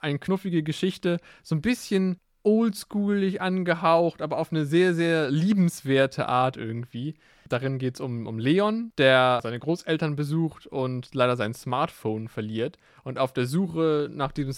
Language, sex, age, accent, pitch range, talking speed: German, male, 20-39, German, 125-160 Hz, 150 wpm